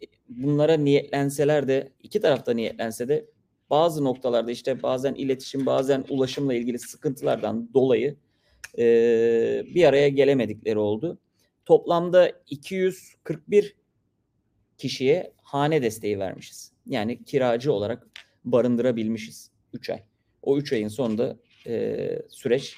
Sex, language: male, Turkish